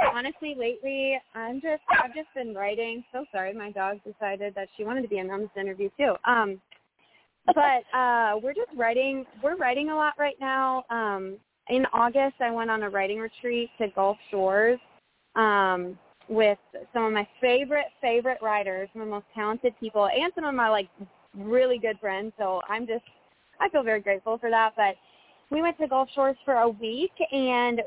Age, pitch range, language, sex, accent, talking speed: 20-39, 205-260 Hz, English, female, American, 185 wpm